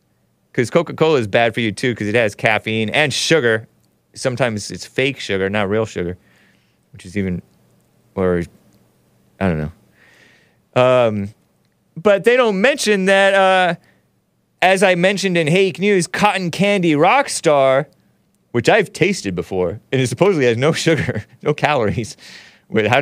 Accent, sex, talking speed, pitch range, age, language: American, male, 145 wpm, 105-170 Hz, 30-49, English